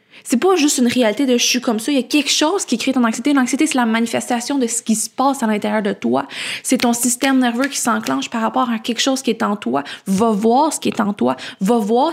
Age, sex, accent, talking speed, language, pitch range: 20-39, female, Canadian, 275 wpm, English, 225-260 Hz